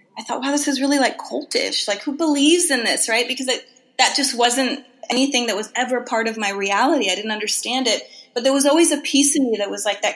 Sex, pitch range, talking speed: female, 220-280 Hz, 255 wpm